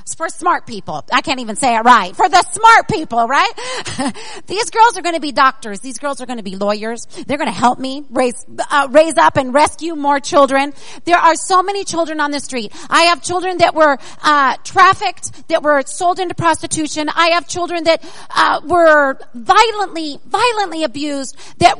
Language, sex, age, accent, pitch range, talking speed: English, female, 40-59, American, 285-375 Hz, 195 wpm